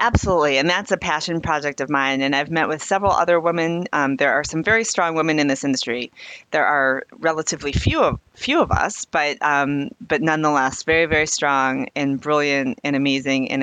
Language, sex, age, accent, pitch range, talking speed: English, female, 30-49, American, 140-170 Hz, 200 wpm